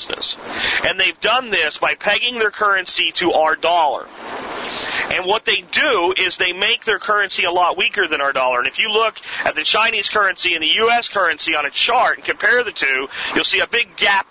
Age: 40-59